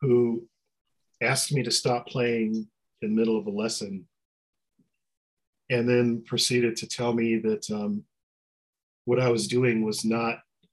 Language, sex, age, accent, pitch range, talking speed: English, male, 40-59, American, 110-125 Hz, 145 wpm